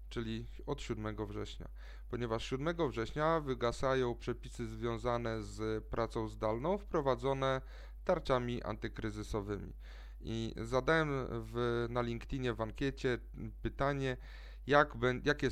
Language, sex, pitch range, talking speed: Polish, male, 110-130 Hz, 95 wpm